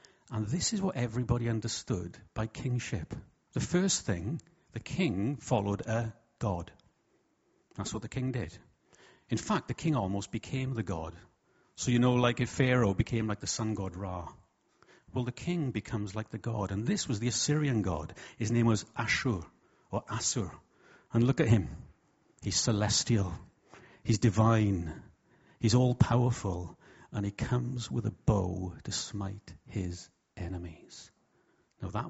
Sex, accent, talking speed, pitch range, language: male, British, 155 wpm, 100-130 Hz, English